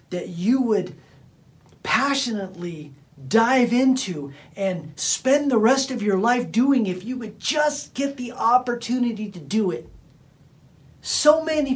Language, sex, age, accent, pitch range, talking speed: English, male, 40-59, American, 140-230 Hz, 135 wpm